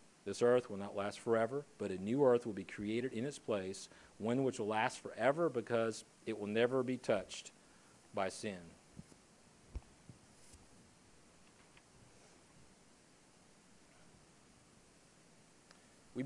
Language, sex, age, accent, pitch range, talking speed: English, male, 40-59, American, 125-160 Hz, 110 wpm